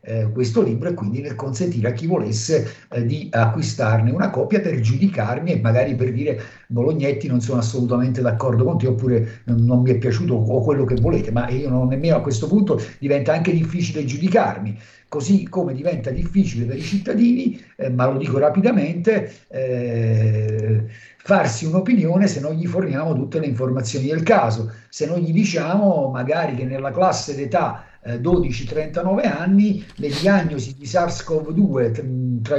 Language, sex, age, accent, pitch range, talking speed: Italian, male, 50-69, native, 125-185 Hz, 165 wpm